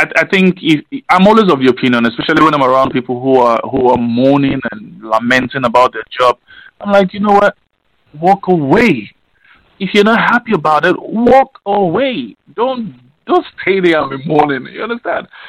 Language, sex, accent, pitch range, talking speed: English, male, Nigerian, 130-195 Hz, 180 wpm